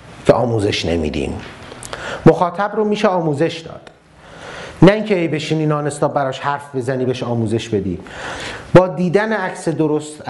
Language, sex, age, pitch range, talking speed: Persian, male, 30-49, 130-165 Hz, 140 wpm